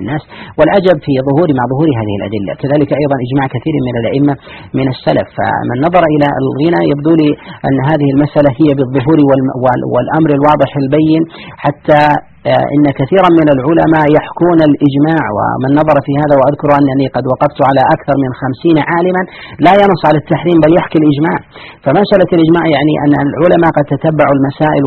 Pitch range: 130-155 Hz